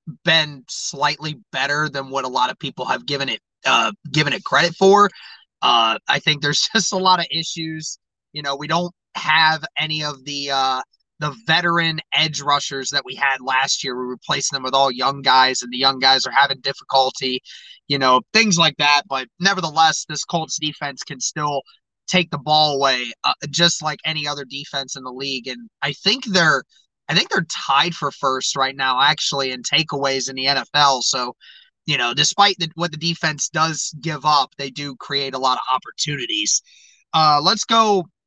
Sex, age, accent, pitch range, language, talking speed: male, 20-39, American, 140-165 Hz, English, 190 wpm